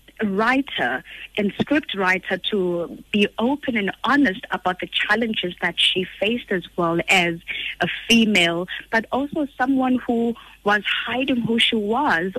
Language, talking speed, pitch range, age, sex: English, 140 wpm, 180-225 Hz, 20-39, female